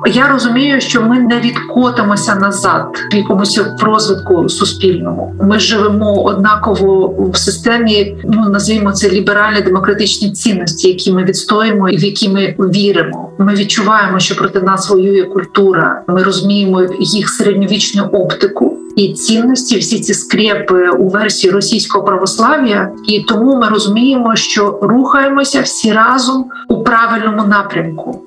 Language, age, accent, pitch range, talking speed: Ukrainian, 40-59, native, 195-225 Hz, 130 wpm